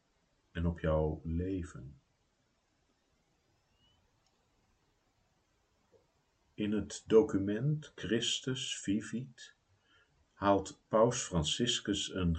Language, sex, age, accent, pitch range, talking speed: Dutch, male, 50-69, Dutch, 85-110 Hz, 65 wpm